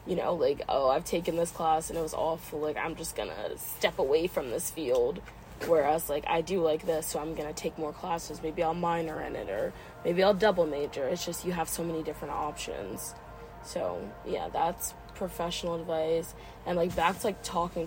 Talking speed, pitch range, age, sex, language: 205 wpm, 165-205 Hz, 20-39, female, English